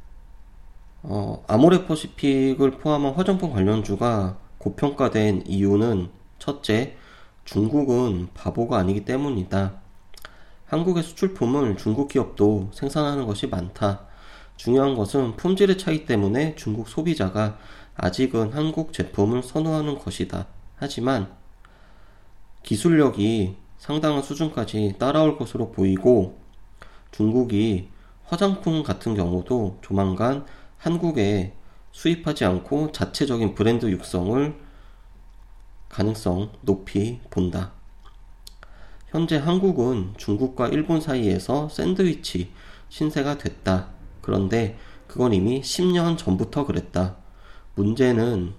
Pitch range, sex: 95-140 Hz, male